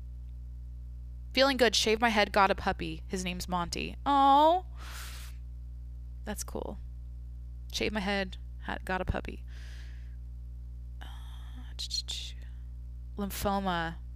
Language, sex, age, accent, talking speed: English, female, 20-39, American, 90 wpm